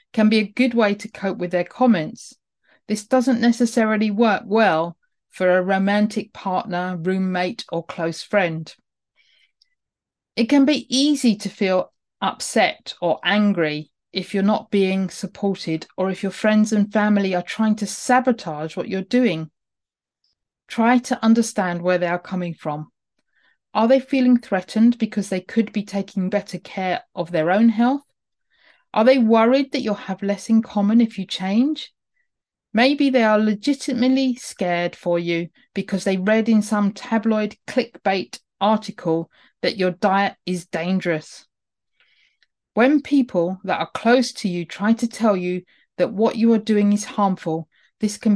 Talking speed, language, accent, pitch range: 155 wpm, English, British, 180-230 Hz